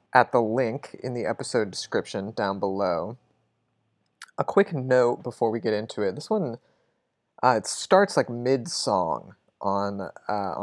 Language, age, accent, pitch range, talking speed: English, 30-49, American, 100-135 Hz, 145 wpm